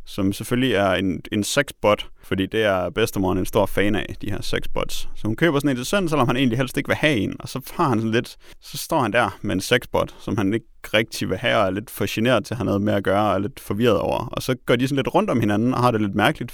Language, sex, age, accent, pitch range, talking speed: Danish, male, 30-49, native, 105-145 Hz, 290 wpm